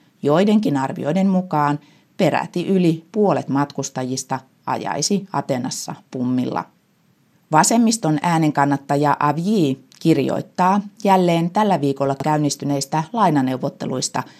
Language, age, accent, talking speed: Finnish, 30-49, native, 85 wpm